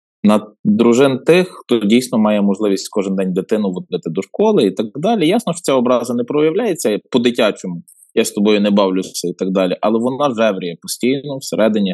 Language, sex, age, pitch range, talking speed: Ukrainian, male, 20-39, 105-155 Hz, 180 wpm